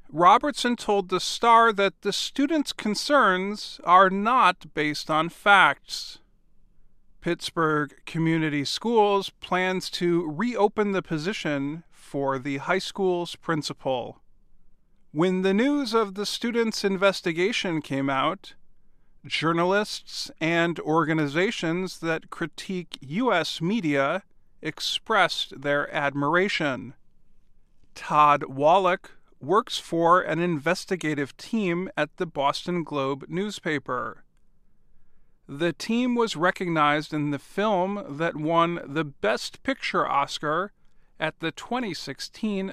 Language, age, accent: English, 40-59, American